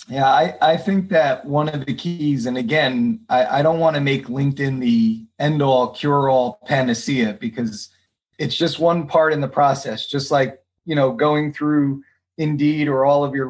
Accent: American